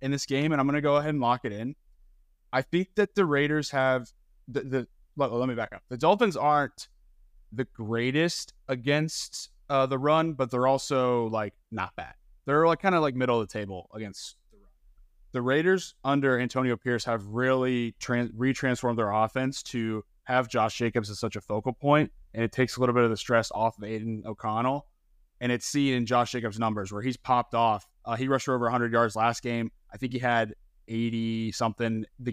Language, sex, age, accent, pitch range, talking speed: English, male, 20-39, American, 110-130 Hz, 210 wpm